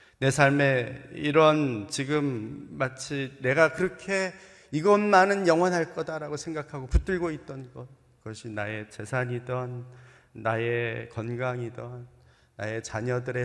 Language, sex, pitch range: Korean, male, 125-155 Hz